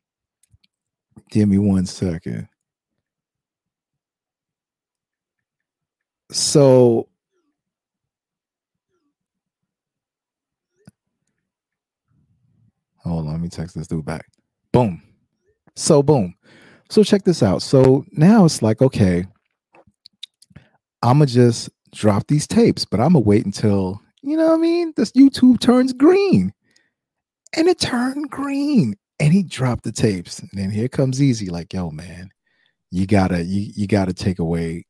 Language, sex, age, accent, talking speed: English, male, 40-59, American, 120 wpm